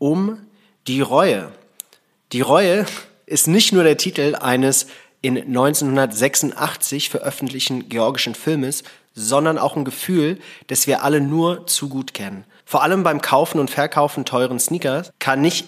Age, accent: 30-49, German